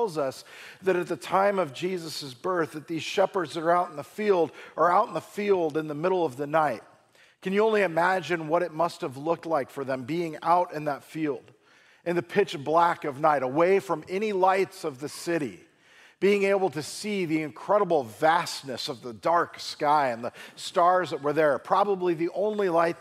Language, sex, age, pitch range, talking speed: English, male, 40-59, 140-180 Hz, 205 wpm